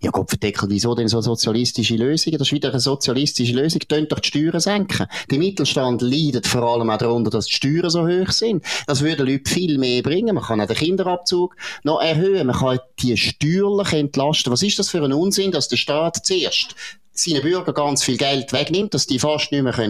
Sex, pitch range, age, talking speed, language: male, 115-155 Hz, 30-49, 210 wpm, German